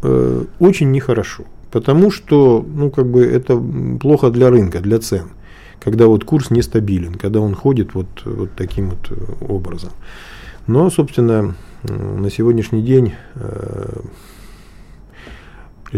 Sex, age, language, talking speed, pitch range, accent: male, 40-59, Russian, 115 wpm, 95-135 Hz, native